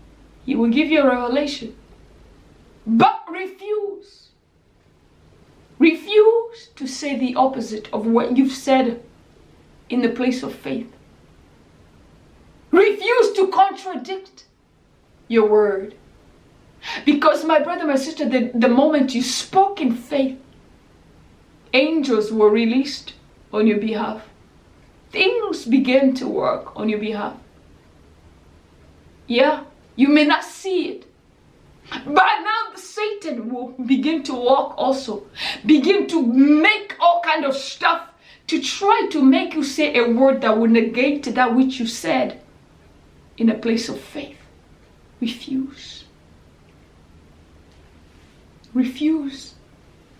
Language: English